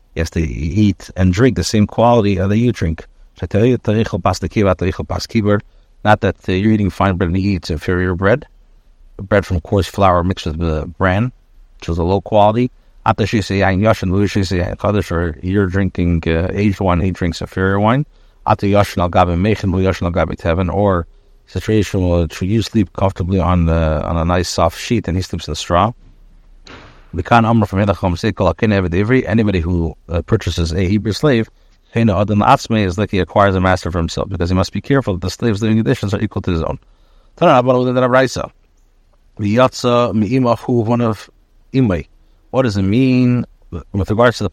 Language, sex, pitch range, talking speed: English, male, 90-110 Hz, 135 wpm